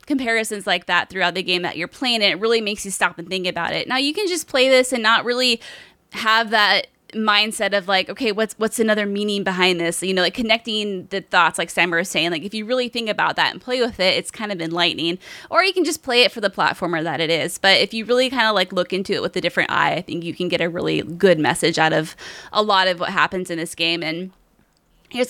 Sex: female